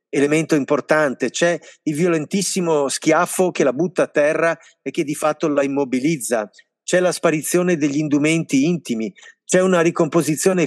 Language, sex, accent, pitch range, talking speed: Italian, male, native, 135-170 Hz, 145 wpm